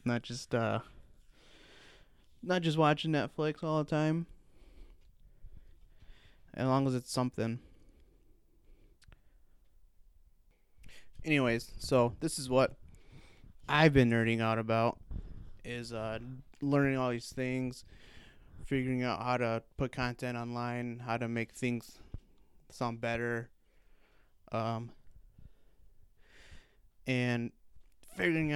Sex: male